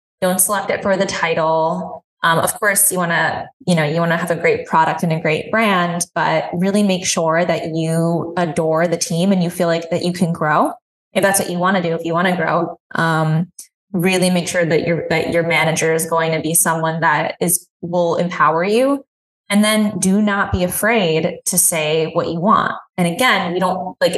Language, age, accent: English, 20-39, American